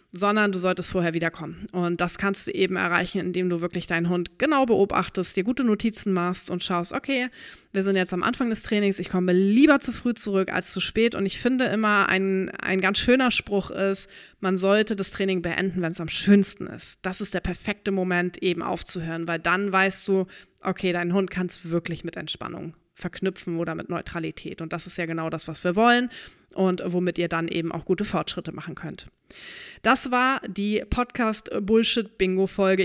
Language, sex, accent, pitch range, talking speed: German, female, German, 180-220 Hz, 195 wpm